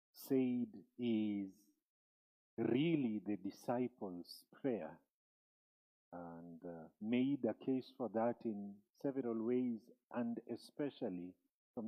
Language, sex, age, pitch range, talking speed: English, male, 50-69, 105-135 Hz, 95 wpm